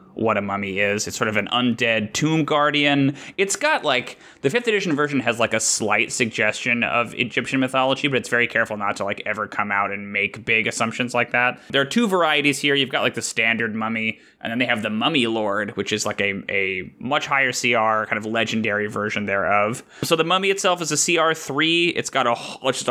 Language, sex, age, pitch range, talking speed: English, male, 20-39, 110-140 Hz, 215 wpm